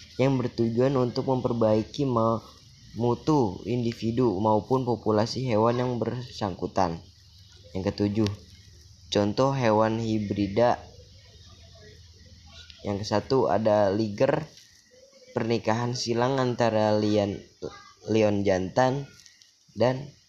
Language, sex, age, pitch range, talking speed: Indonesian, female, 10-29, 105-125 Hz, 75 wpm